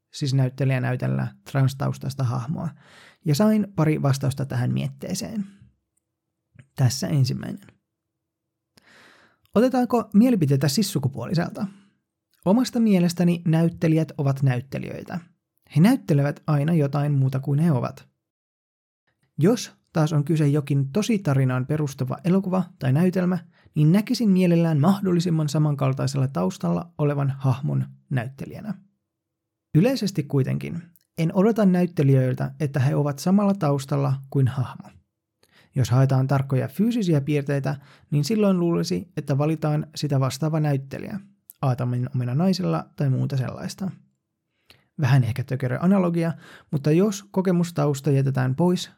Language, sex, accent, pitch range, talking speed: Finnish, male, native, 135-180 Hz, 110 wpm